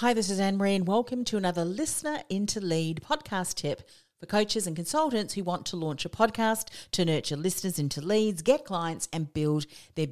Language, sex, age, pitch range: English, female, 40-59, 150-210 Hz